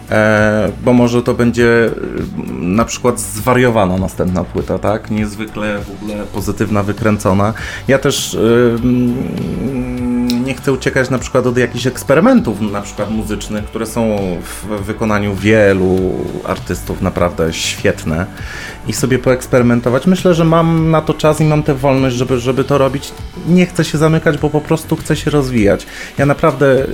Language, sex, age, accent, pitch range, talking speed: Polish, male, 30-49, native, 105-135 Hz, 145 wpm